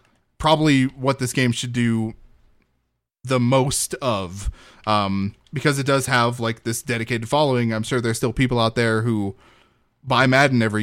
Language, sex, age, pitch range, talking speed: English, male, 20-39, 110-135 Hz, 160 wpm